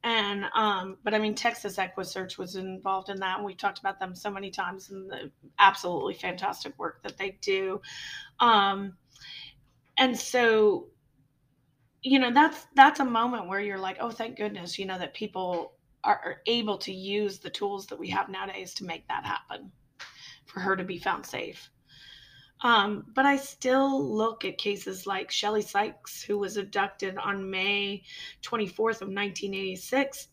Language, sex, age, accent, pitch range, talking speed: English, female, 30-49, American, 190-225 Hz, 170 wpm